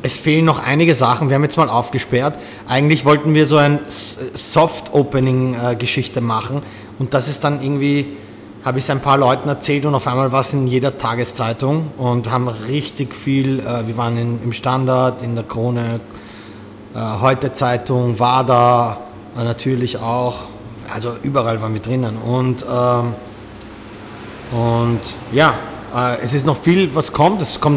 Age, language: 30-49, English